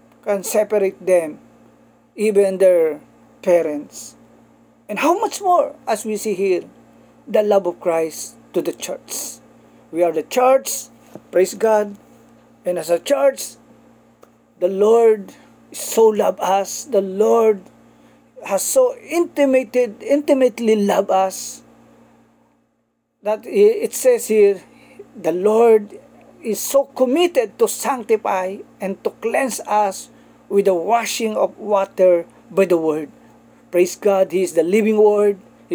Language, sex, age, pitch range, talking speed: Filipino, male, 40-59, 195-255 Hz, 125 wpm